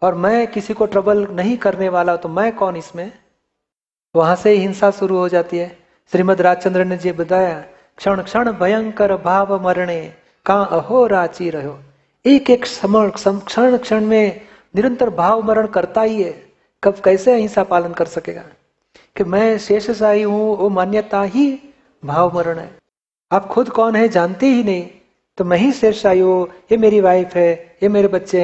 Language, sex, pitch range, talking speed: Hindi, male, 180-215 Hz, 170 wpm